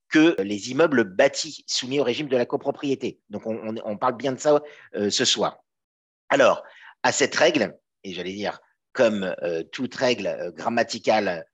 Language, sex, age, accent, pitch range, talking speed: French, male, 50-69, French, 115-145 Hz, 175 wpm